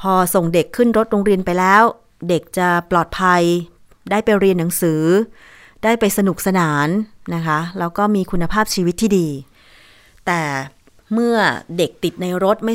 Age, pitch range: 20-39, 175-225 Hz